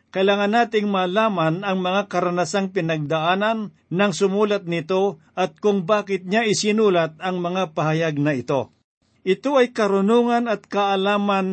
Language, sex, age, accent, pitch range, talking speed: Filipino, male, 50-69, native, 165-200 Hz, 130 wpm